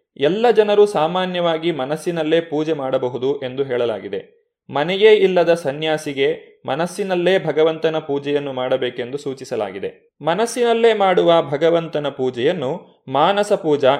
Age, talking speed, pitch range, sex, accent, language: 30-49, 95 wpm, 145-205 Hz, male, native, Kannada